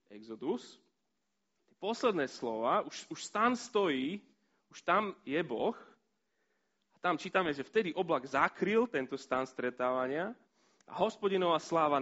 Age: 30-49